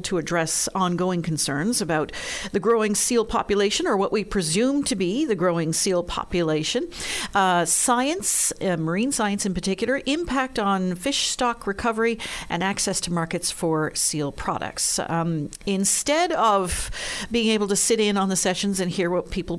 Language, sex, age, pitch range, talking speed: English, female, 50-69, 170-230 Hz, 160 wpm